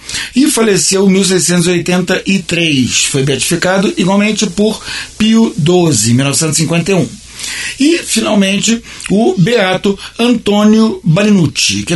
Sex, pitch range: male, 170-235 Hz